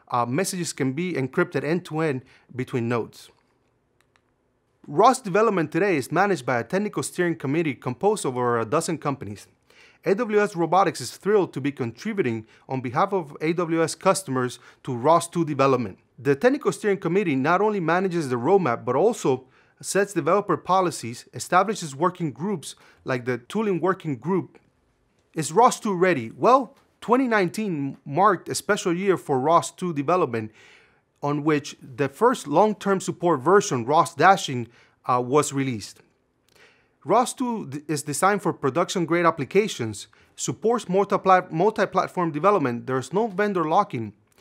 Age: 40-59